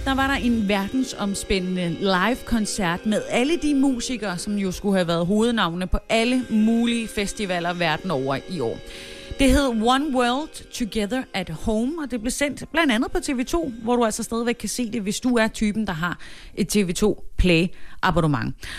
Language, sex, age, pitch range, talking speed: Danish, female, 30-49, 180-245 Hz, 170 wpm